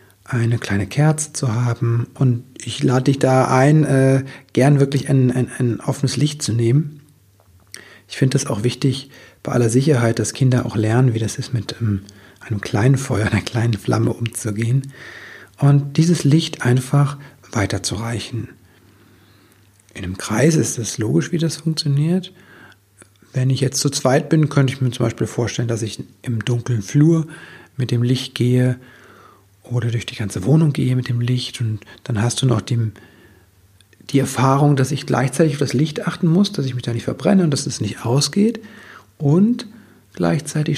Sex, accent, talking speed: male, German, 170 wpm